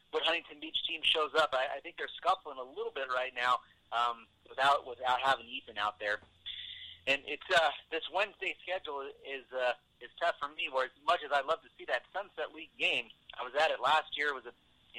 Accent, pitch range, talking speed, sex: American, 120-155 Hz, 230 wpm, male